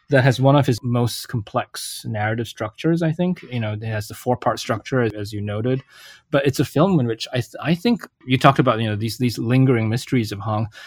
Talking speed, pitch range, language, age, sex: 235 wpm, 105-135 Hz, English, 20-39, male